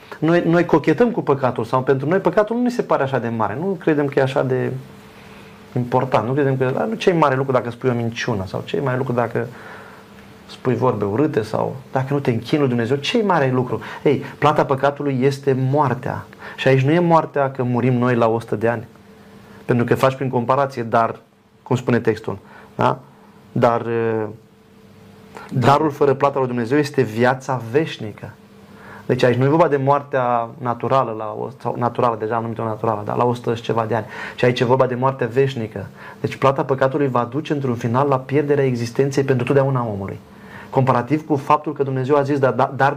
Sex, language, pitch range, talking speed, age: male, Romanian, 120-140 Hz, 195 wpm, 30-49